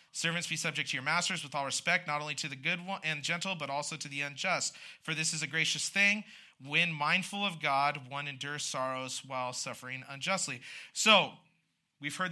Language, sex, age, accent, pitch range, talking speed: English, male, 30-49, American, 140-180 Hz, 195 wpm